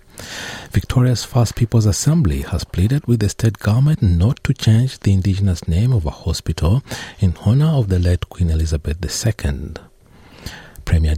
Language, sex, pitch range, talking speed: English, male, 80-105 Hz, 150 wpm